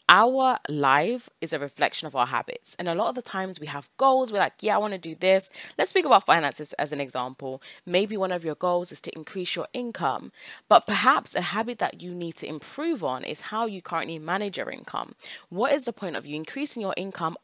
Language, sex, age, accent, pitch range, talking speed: English, female, 10-29, British, 150-195 Hz, 235 wpm